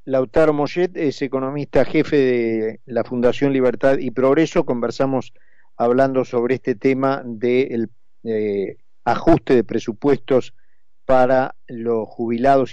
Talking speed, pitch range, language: 110 wpm, 115-135 Hz, Spanish